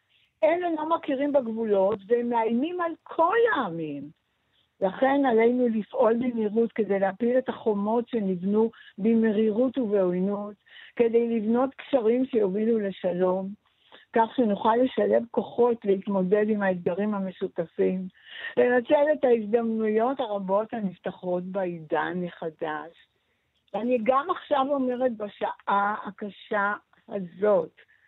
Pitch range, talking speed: 200-270 Hz, 100 wpm